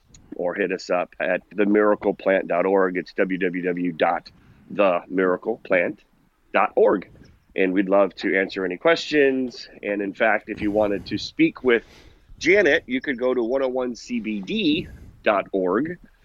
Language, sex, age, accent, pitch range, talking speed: English, male, 30-49, American, 95-120 Hz, 110 wpm